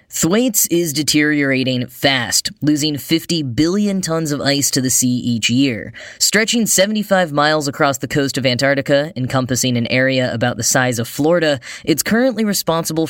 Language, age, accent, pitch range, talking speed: English, 10-29, American, 130-165 Hz, 155 wpm